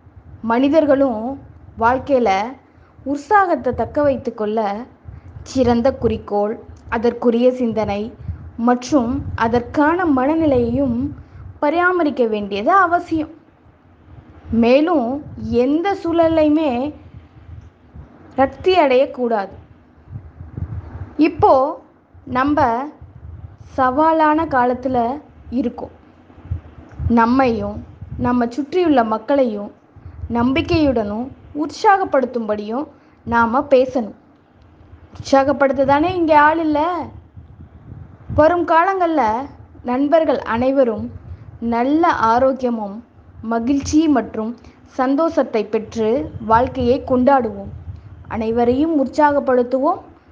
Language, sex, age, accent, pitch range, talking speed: Tamil, female, 20-39, native, 225-300 Hz, 60 wpm